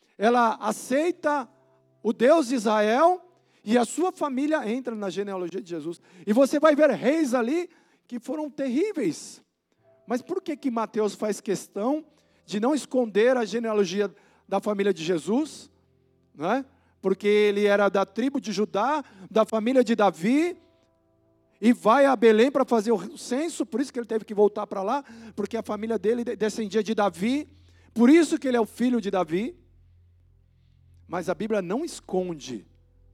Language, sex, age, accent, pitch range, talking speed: Portuguese, male, 50-69, Brazilian, 160-255 Hz, 165 wpm